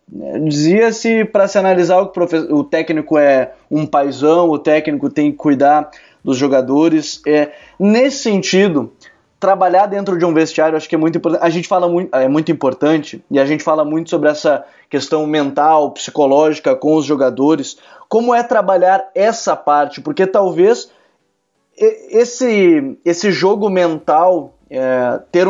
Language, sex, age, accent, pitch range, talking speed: Portuguese, male, 20-39, Brazilian, 150-175 Hz, 150 wpm